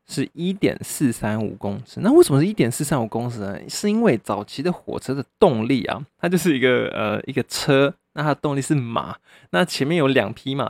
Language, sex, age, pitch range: Chinese, male, 20-39, 115-145 Hz